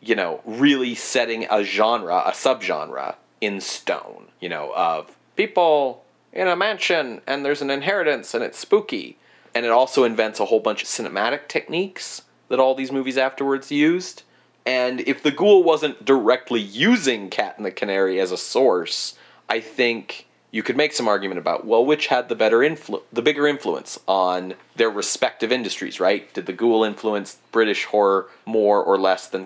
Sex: male